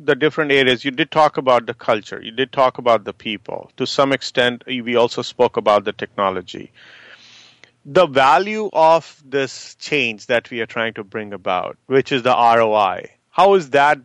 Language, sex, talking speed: English, male, 185 wpm